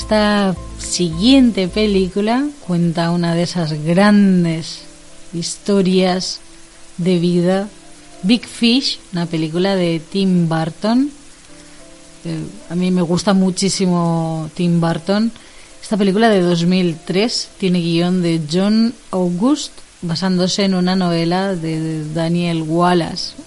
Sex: female